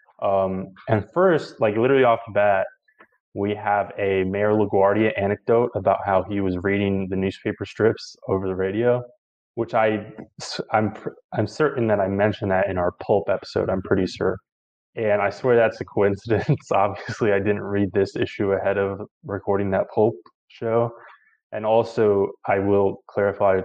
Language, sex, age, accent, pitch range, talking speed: English, male, 20-39, American, 95-110 Hz, 160 wpm